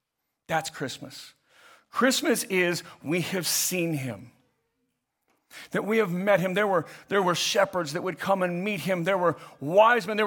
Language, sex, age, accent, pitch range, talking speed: English, male, 50-69, American, 150-215 Hz, 170 wpm